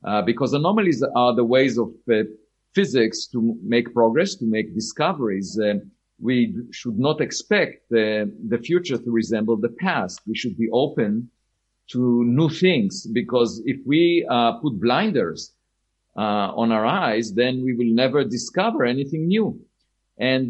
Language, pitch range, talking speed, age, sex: Spanish, 115-165 Hz, 150 wpm, 50-69, male